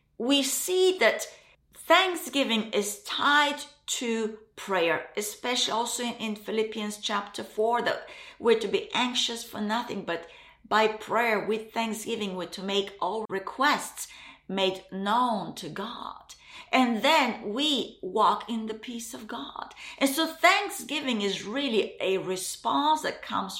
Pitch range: 210-285 Hz